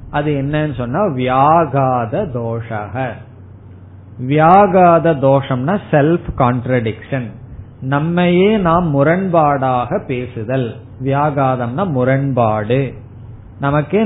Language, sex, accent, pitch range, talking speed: Tamil, male, native, 125-160 Hz, 60 wpm